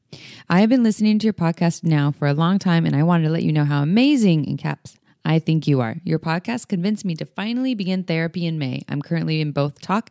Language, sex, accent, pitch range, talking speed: English, female, American, 145-190 Hz, 250 wpm